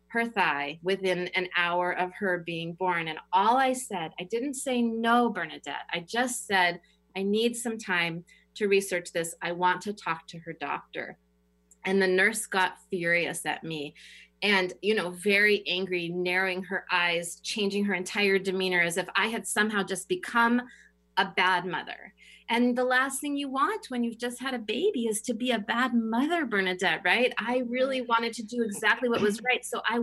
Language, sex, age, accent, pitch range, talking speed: English, female, 30-49, American, 185-235 Hz, 190 wpm